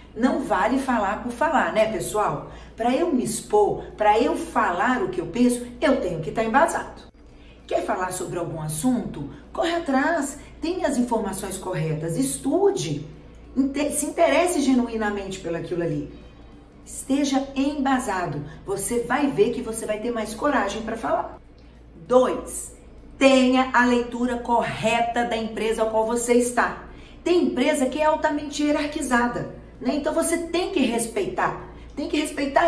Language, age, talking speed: Portuguese, 40-59, 145 wpm